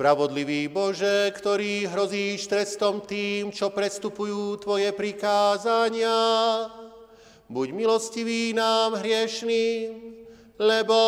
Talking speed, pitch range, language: 80 wpm, 205-230 Hz, Slovak